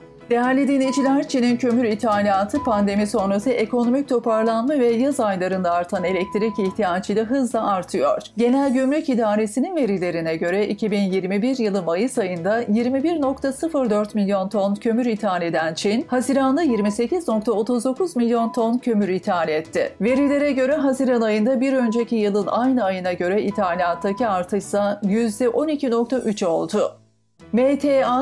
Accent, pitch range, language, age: native, 200-255 Hz, Turkish, 40-59